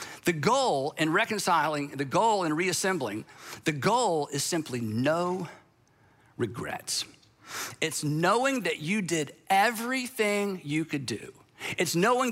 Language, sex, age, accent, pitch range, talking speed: English, male, 50-69, American, 150-210 Hz, 120 wpm